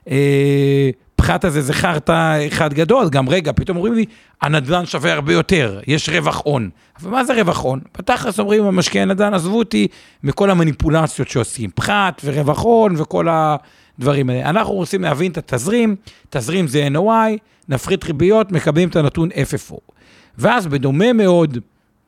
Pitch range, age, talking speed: 135-190 Hz, 50-69, 150 wpm